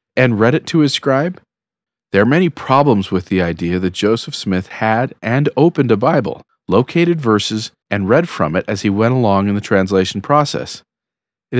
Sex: male